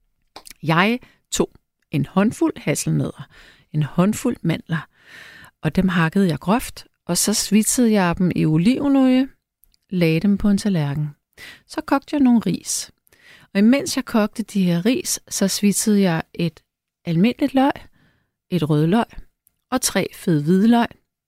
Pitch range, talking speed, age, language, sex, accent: 180-245 Hz, 145 wpm, 30-49, Danish, female, native